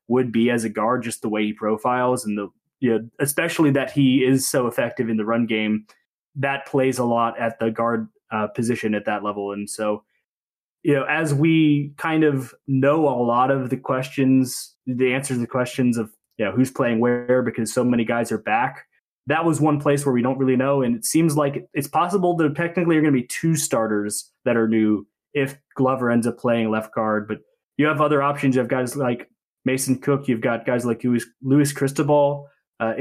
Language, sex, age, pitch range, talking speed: English, male, 20-39, 115-140 Hz, 215 wpm